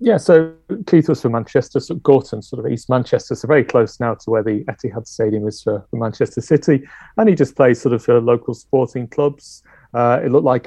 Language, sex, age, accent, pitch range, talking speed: English, male, 40-59, British, 120-140 Hz, 220 wpm